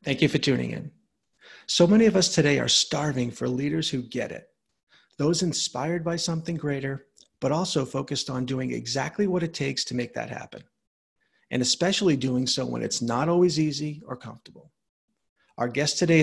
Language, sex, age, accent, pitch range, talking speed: English, male, 40-59, American, 130-160 Hz, 180 wpm